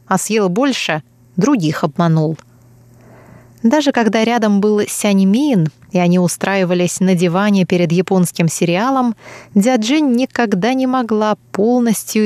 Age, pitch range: 20-39, 175-235 Hz